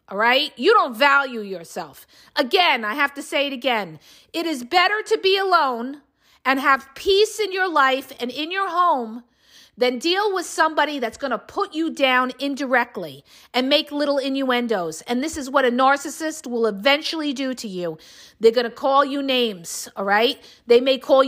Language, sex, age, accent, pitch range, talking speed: English, female, 40-59, American, 235-290 Hz, 185 wpm